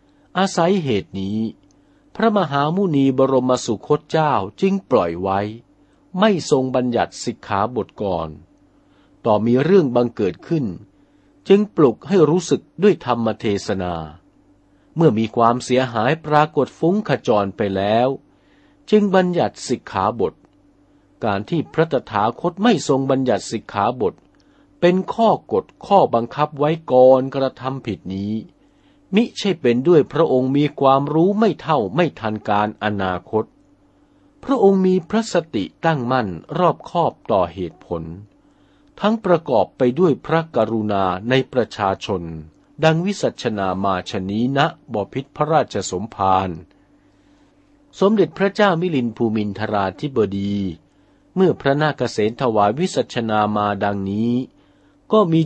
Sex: male